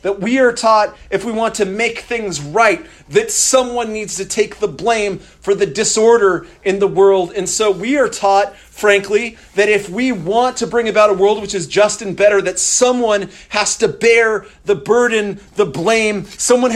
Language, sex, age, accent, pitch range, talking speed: English, male, 40-59, American, 185-220 Hz, 195 wpm